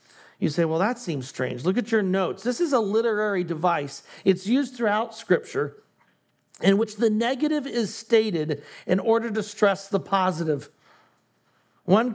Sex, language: male, English